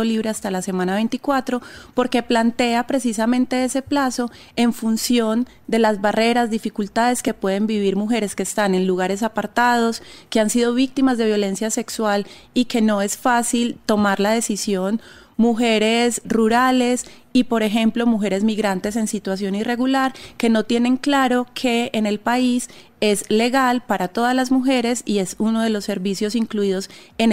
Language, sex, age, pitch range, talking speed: Spanish, female, 30-49, 210-245 Hz, 160 wpm